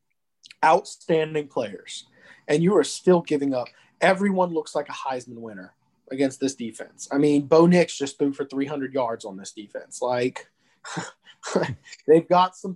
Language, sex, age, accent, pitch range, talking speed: English, male, 20-39, American, 140-175 Hz, 155 wpm